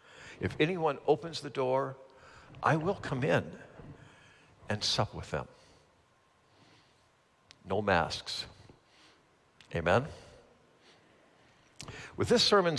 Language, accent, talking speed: English, American, 90 wpm